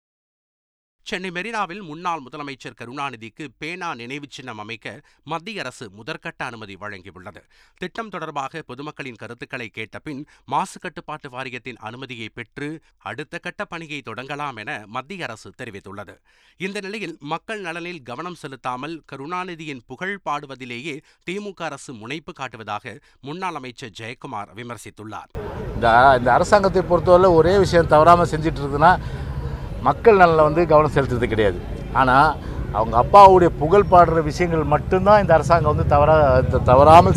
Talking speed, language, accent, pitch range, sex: 105 wpm, Tamil, native, 120-165 Hz, male